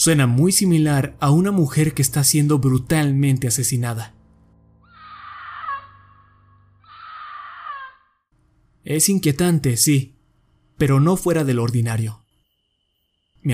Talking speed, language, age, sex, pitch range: 90 wpm, Spanish, 30-49, male, 120-160 Hz